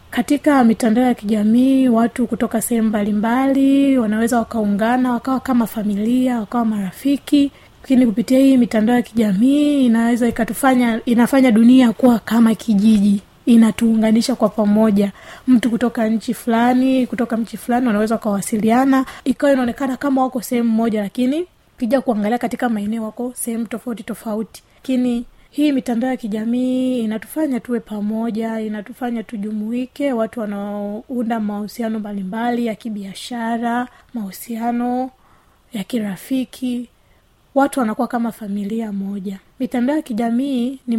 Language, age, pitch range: Swahili, 20-39, 220-250 Hz